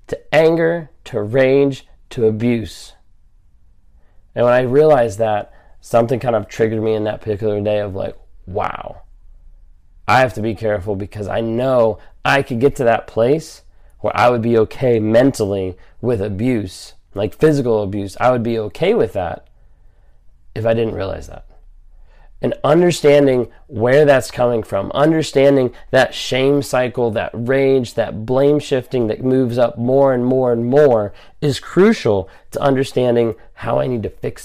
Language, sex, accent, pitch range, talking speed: English, male, American, 105-135 Hz, 160 wpm